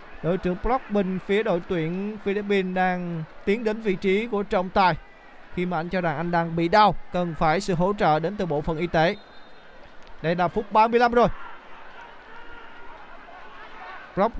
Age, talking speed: 20-39, 175 wpm